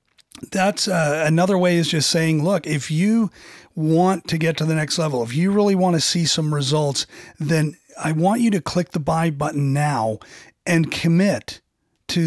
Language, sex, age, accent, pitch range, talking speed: English, male, 40-59, American, 140-165 Hz, 185 wpm